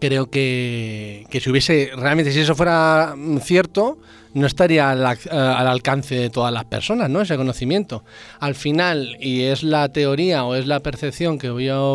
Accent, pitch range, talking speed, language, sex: Spanish, 125-150 Hz, 170 wpm, Spanish, male